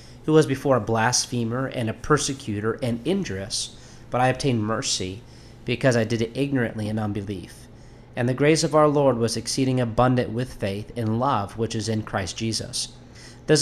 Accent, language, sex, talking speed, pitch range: American, English, male, 175 wpm, 115-130 Hz